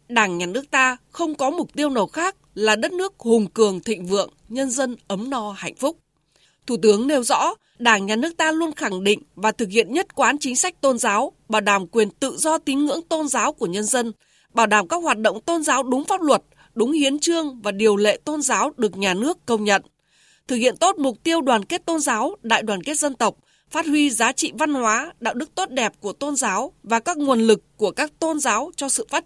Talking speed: 240 wpm